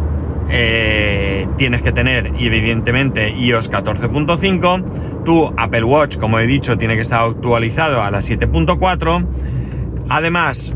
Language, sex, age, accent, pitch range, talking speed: Spanish, male, 30-49, Spanish, 95-135 Hz, 115 wpm